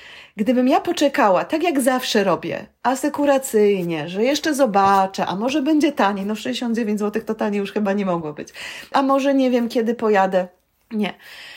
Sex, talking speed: female, 165 wpm